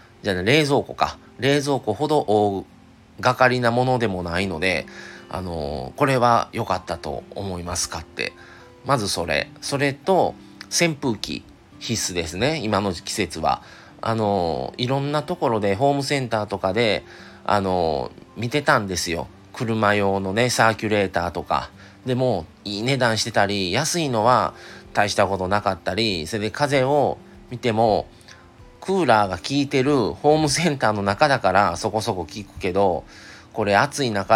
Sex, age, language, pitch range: male, 40-59, Japanese, 95-130 Hz